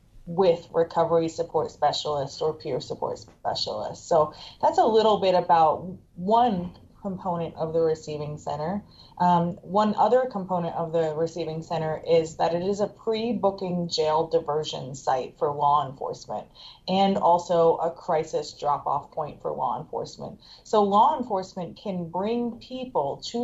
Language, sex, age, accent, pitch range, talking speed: English, female, 30-49, American, 160-200 Hz, 145 wpm